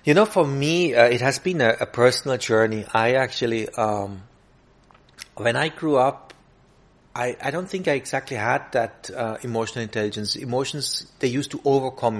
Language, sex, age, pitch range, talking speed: Hindi, male, 30-49, 115-135 Hz, 170 wpm